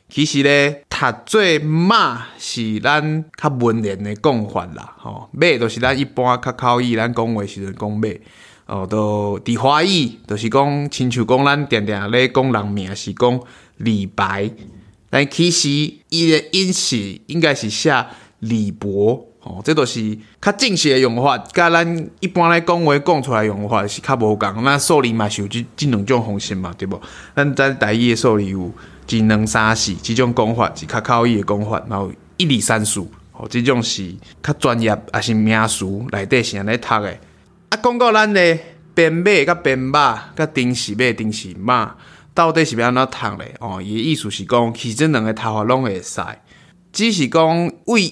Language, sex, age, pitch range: Chinese, male, 20-39, 105-150 Hz